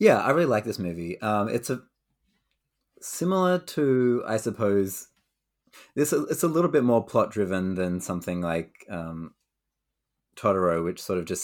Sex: male